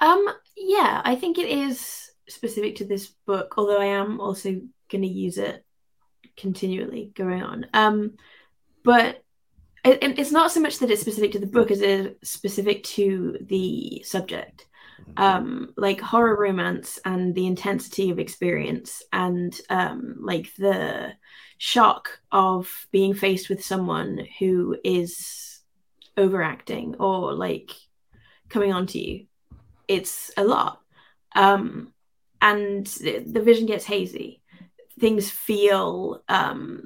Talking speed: 130 wpm